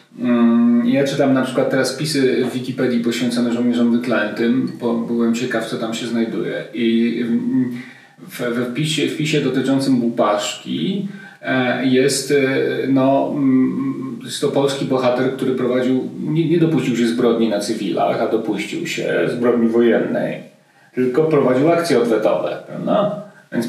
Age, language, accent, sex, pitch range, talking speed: 40-59, Polish, native, male, 120-145 Hz, 130 wpm